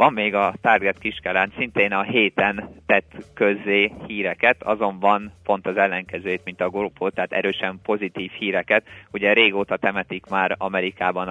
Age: 20-39